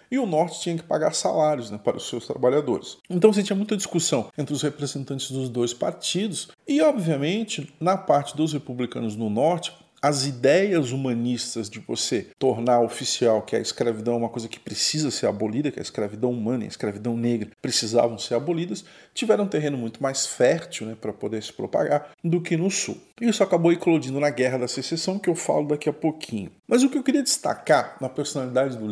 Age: 40-59